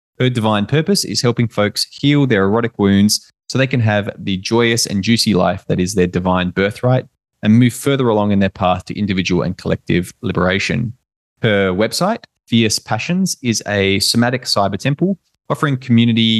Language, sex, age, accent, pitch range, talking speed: English, male, 20-39, Australian, 100-125 Hz, 170 wpm